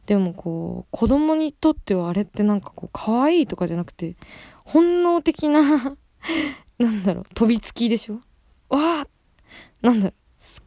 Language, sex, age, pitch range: Japanese, female, 20-39, 175-245 Hz